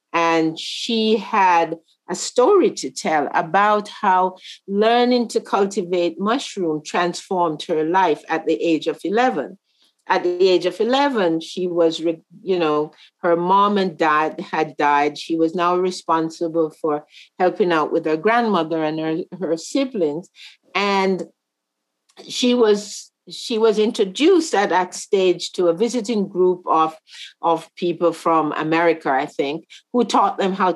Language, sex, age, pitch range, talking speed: English, female, 50-69, 165-210 Hz, 145 wpm